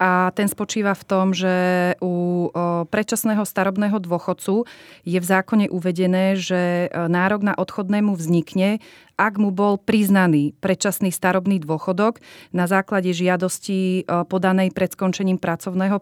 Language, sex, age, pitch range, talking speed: Slovak, female, 30-49, 180-200 Hz, 125 wpm